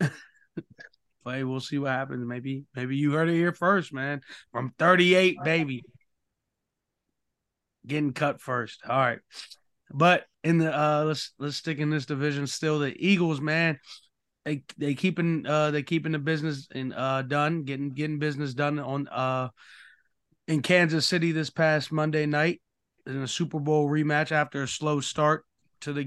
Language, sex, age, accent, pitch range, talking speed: English, male, 30-49, American, 130-155 Hz, 160 wpm